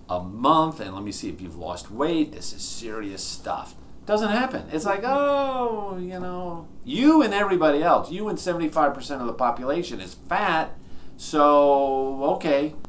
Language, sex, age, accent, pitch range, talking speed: English, male, 50-69, American, 90-145 Hz, 160 wpm